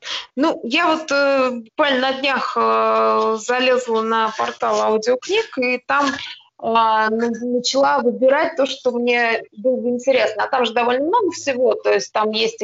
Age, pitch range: 20-39, 215-265 Hz